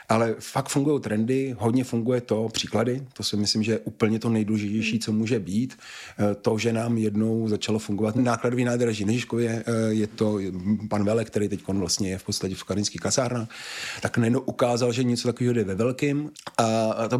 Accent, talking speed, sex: native, 180 wpm, male